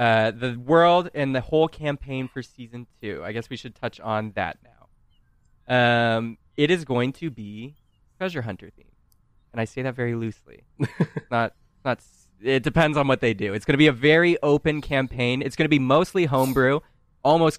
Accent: American